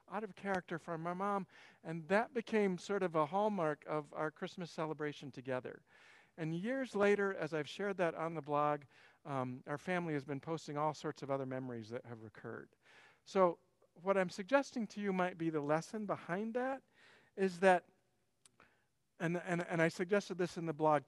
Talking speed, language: 185 wpm, English